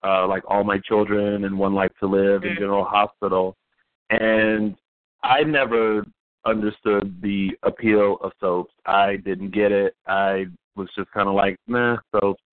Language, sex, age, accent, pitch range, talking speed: English, male, 30-49, American, 100-110 Hz, 160 wpm